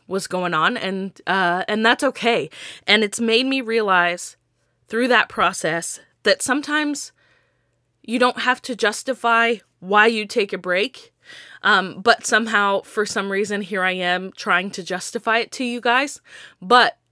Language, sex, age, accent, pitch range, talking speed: English, female, 20-39, American, 185-230 Hz, 160 wpm